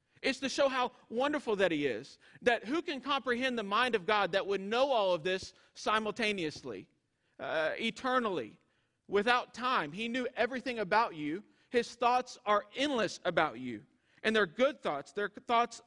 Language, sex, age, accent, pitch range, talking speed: English, male, 40-59, American, 185-250 Hz, 165 wpm